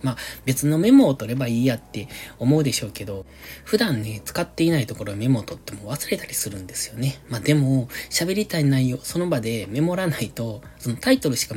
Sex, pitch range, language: male, 110-145 Hz, Japanese